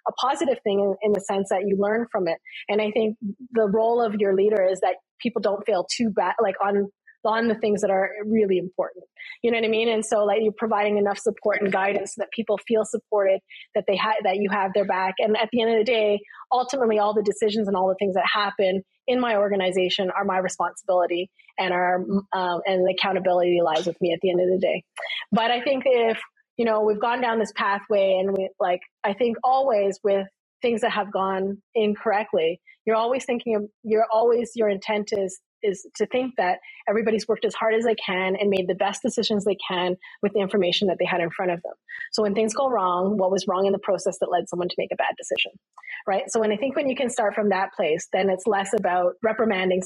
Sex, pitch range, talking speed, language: female, 185-225 Hz, 235 wpm, English